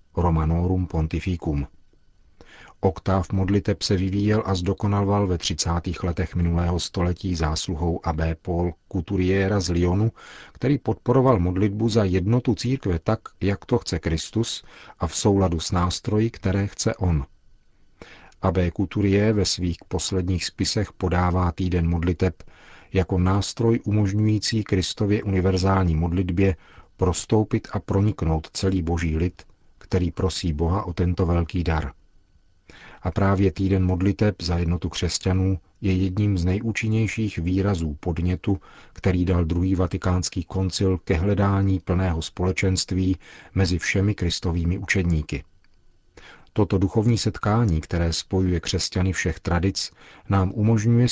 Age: 40-59